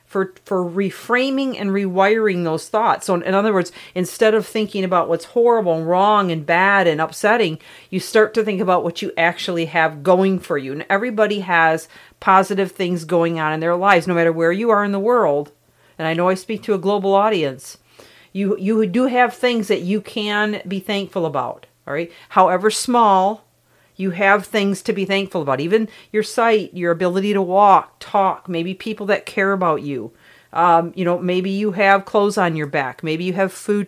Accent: American